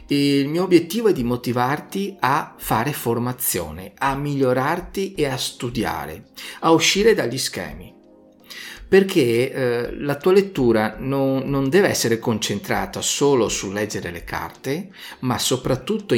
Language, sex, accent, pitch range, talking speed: Italian, male, native, 105-145 Hz, 125 wpm